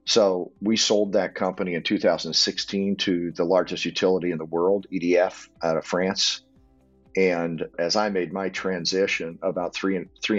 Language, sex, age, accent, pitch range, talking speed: English, male, 50-69, American, 85-95 Hz, 160 wpm